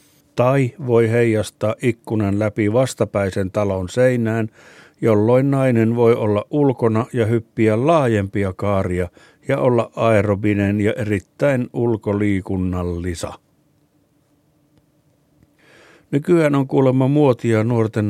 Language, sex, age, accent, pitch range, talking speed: Finnish, male, 50-69, native, 105-140 Hz, 95 wpm